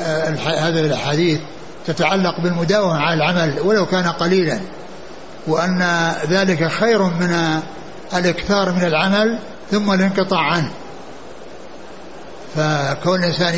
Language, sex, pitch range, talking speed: Arabic, male, 170-205 Hz, 95 wpm